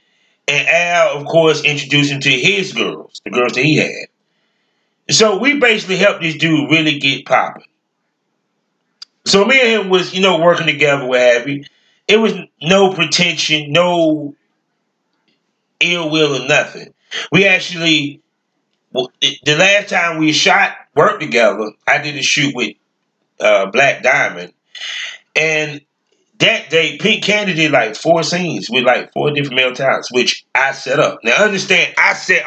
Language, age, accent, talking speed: English, 30-49, American, 155 wpm